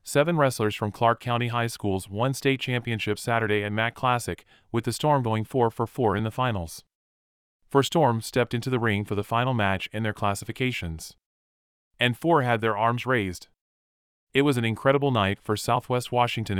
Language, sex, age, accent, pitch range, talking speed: English, male, 30-49, American, 100-125 Hz, 185 wpm